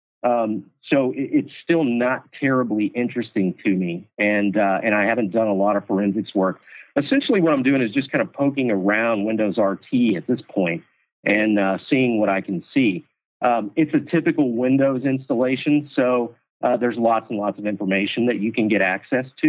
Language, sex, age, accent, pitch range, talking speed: English, male, 50-69, American, 105-135 Hz, 190 wpm